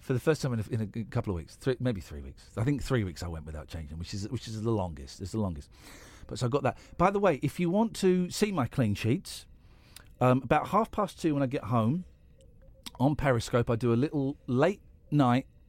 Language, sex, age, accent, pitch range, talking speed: English, male, 40-59, British, 115-180 Hz, 250 wpm